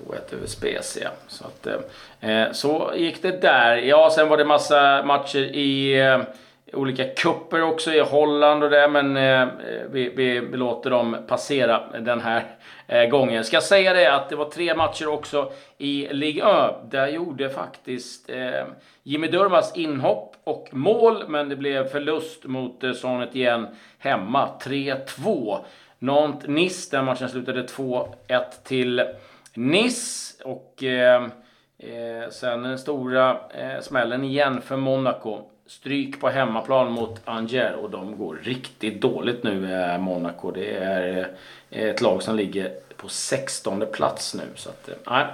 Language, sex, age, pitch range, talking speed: Swedish, male, 40-59, 120-150 Hz, 150 wpm